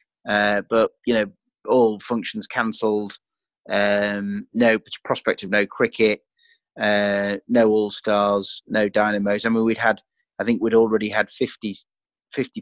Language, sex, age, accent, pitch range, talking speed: English, male, 30-49, British, 105-120 Hz, 135 wpm